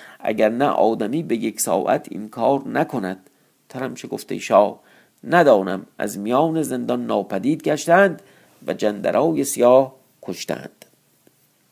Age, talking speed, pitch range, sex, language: 50-69, 115 wpm, 100-140 Hz, male, Persian